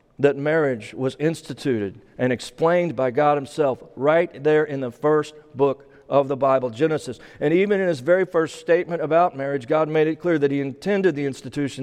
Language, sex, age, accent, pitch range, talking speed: English, male, 40-59, American, 125-155 Hz, 190 wpm